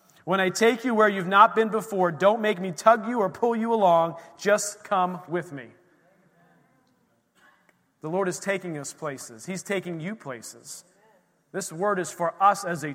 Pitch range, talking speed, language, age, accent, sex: 170-215 Hz, 180 wpm, English, 40-59, American, male